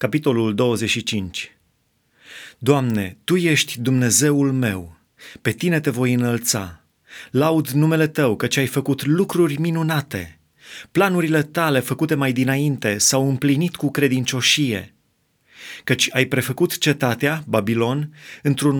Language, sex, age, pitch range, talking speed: Romanian, male, 30-49, 115-145 Hz, 110 wpm